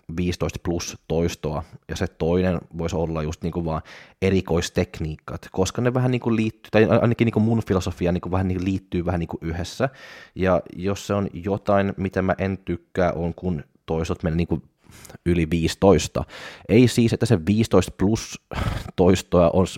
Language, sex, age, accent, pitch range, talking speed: Finnish, male, 20-39, native, 85-95 Hz, 160 wpm